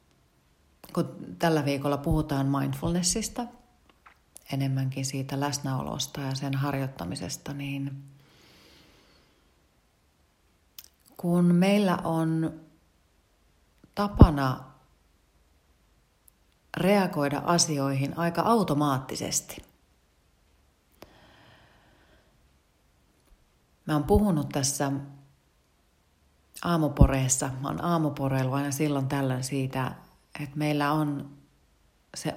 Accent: native